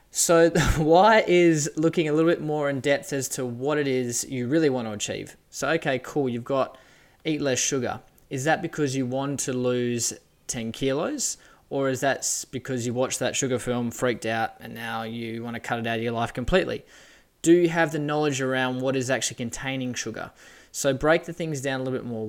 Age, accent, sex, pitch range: 20-39, Australian, male, 120-140 Hz